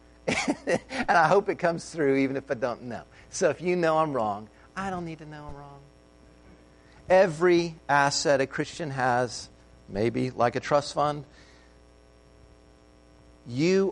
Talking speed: 150 wpm